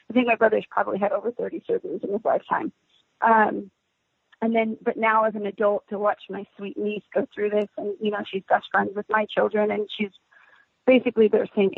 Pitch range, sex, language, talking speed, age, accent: 200-235 Hz, female, English, 215 wpm, 30-49, American